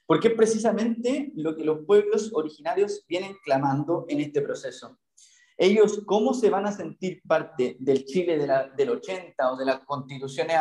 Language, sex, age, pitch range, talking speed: Spanish, male, 30-49, 145-230 Hz, 170 wpm